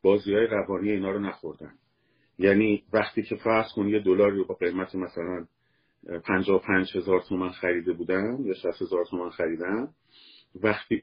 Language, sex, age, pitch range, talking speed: Persian, male, 50-69, 95-125 Hz, 130 wpm